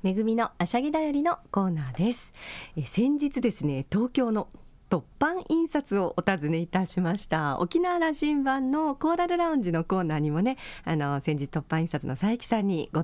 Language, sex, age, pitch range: Japanese, female, 40-59, 160-245 Hz